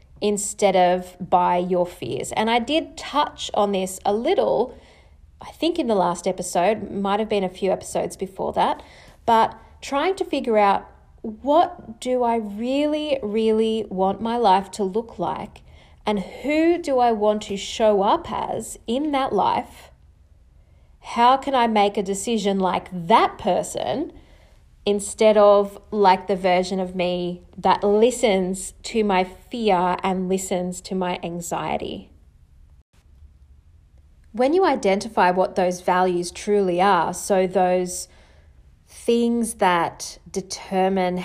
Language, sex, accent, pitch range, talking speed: English, female, Australian, 180-225 Hz, 135 wpm